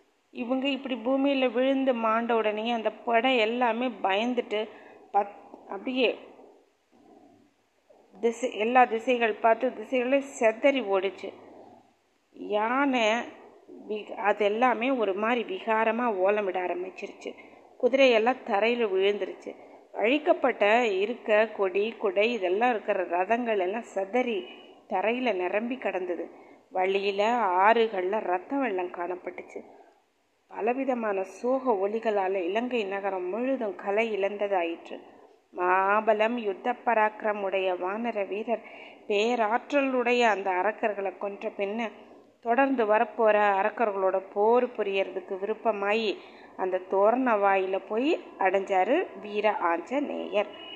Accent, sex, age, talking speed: native, female, 30-49, 90 wpm